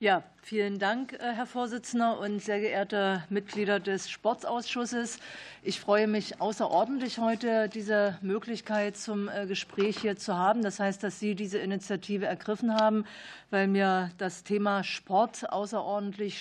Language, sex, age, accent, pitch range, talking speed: German, female, 50-69, German, 185-210 Hz, 135 wpm